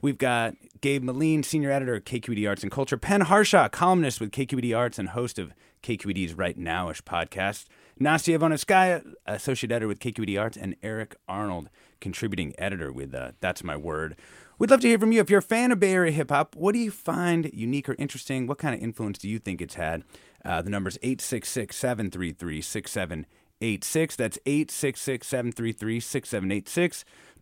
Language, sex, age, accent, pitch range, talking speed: English, male, 30-49, American, 100-145 Hz, 170 wpm